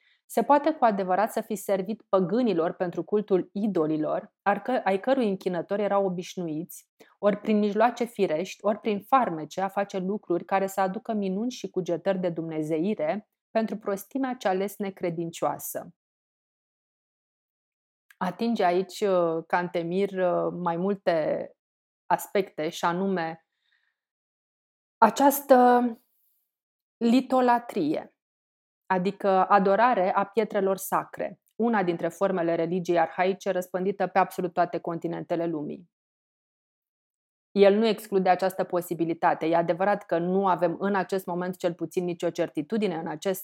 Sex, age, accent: female, 30-49, native